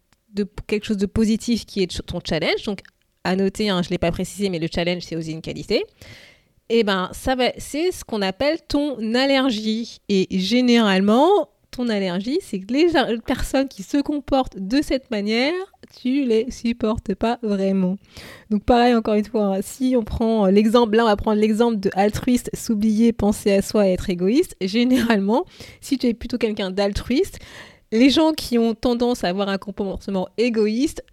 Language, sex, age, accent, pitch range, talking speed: French, female, 20-39, French, 190-240 Hz, 180 wpm